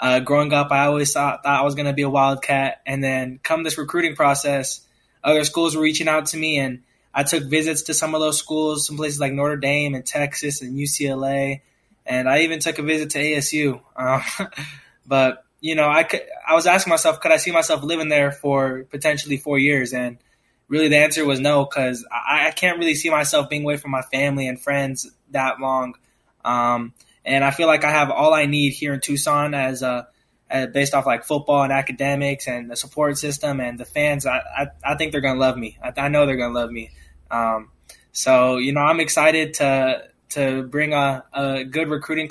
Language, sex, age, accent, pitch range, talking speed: English, male, 10-29, American, 130-150 Hz, 220 wpm